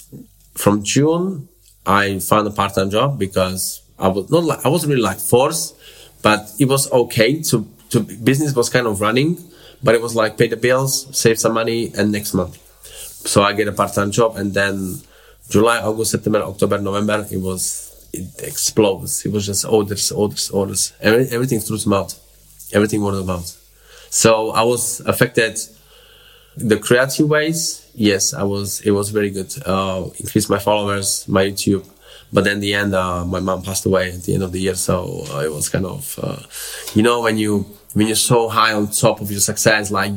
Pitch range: 95-115 Hz